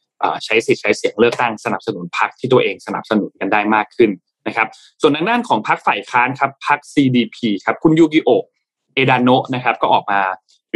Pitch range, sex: 110-150 Hz, male